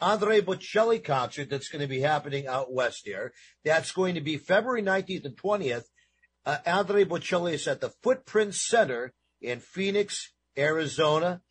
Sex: male